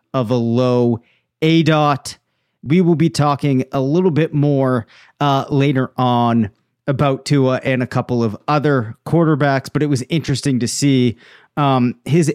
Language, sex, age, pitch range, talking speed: English, male, 30-49, 125-150 Hz, 150 wpm